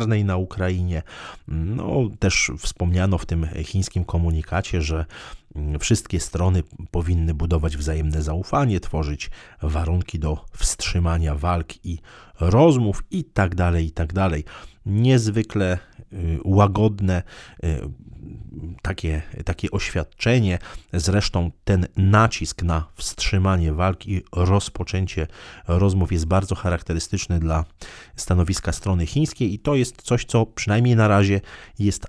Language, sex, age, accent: Polish, male, 40-59, native